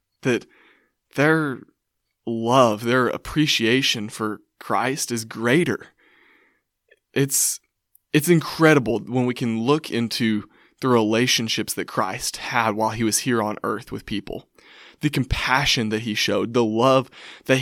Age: 20-39